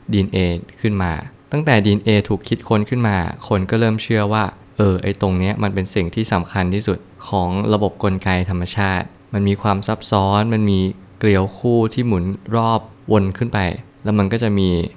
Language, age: Thai, 20-39